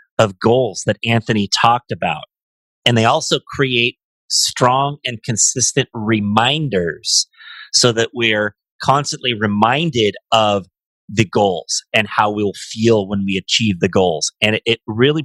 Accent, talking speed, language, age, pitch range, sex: American, 140 wpm, English, 30-49, 105-125 Hz, male